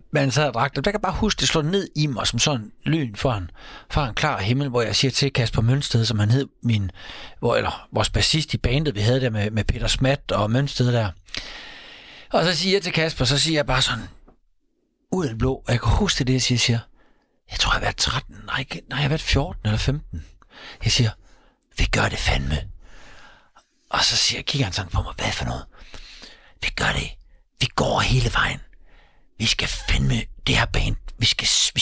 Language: Danish